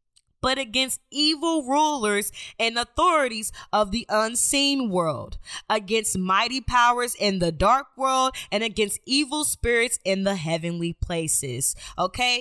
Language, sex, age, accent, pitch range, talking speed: English, female, 20-39, American, 215-260 Hz, 125 wpm